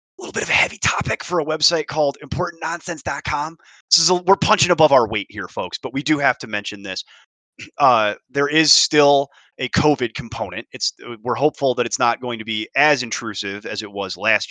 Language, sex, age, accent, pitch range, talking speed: English, male, 30-49, American, 105-140 Hz, 210 wpm